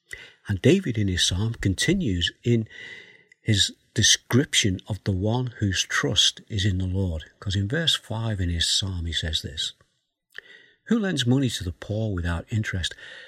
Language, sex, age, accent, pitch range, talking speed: English, male, 60-79, British, 95-125 Hz, 165 wpm